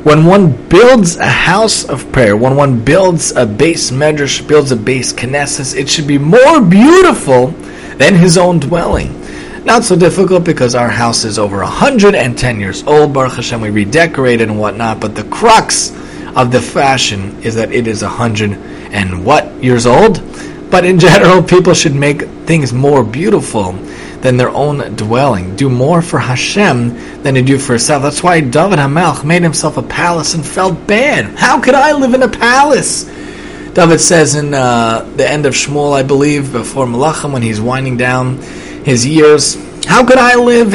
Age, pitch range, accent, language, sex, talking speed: 30-49, 120-165 Hz, American, English, male, 175 wpm